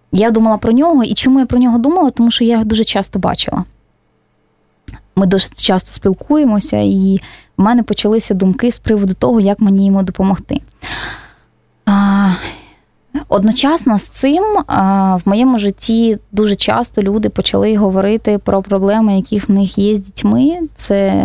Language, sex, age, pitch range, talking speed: Russian, female, 20-39, 190-225 Hz, 150 wpm